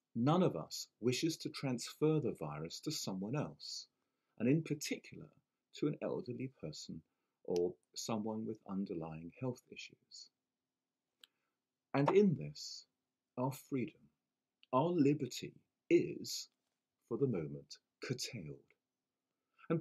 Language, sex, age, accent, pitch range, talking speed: English, male, 50-69, British, 110-155 Hz, 110 wpm